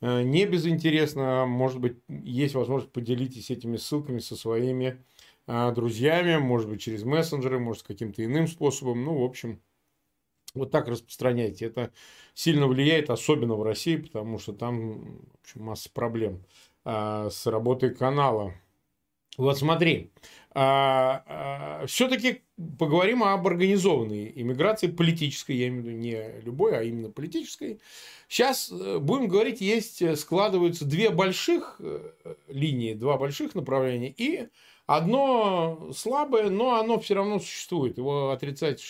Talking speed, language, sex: 130 wpm, Russian, male